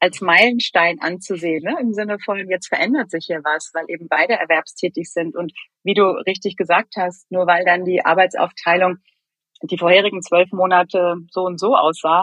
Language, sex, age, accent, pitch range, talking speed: German, female, 30-49, German, 175-210 Hz, 175 wpm